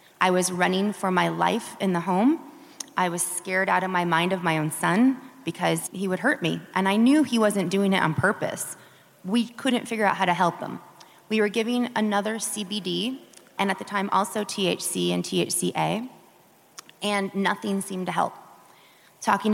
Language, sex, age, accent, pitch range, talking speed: English, female, 20-39, American, 185-225 Hz, 185 wpm